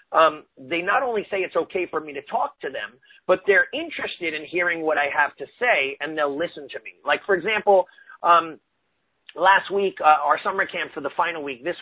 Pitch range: 155-210 Hz